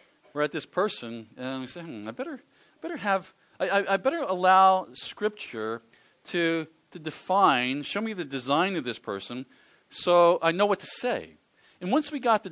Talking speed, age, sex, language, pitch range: 185 wpm, 40-59, male, English, 135-230 Hz